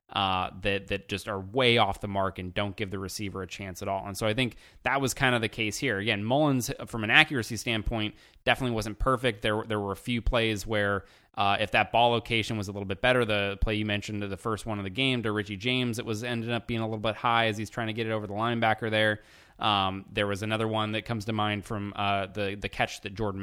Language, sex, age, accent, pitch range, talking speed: English, male, 20-39, American, 105-120 Hz, 265 wpm